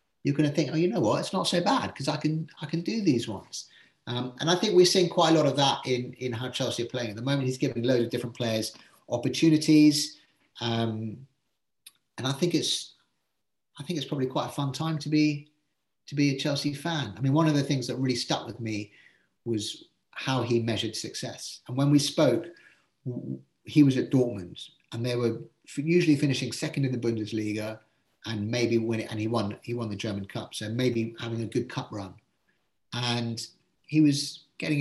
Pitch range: 115-145 Hz